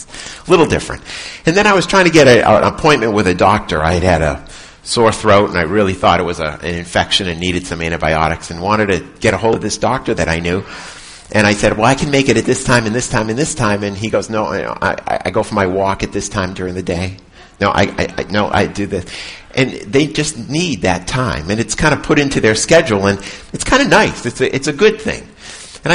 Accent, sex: American, male